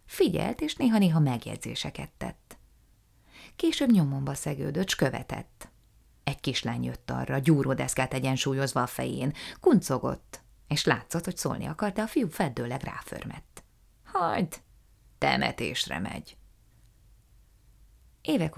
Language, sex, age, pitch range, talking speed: Hungarian, female, 30-49, 130-195 Hz, 100 wpm